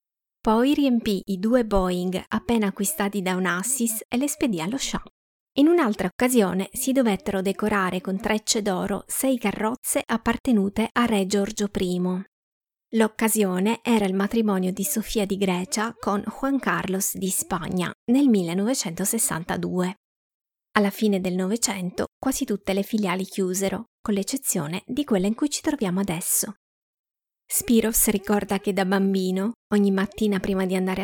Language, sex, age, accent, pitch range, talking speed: Italian, female, 20-39, native, 190-220 Hz, 140 wpm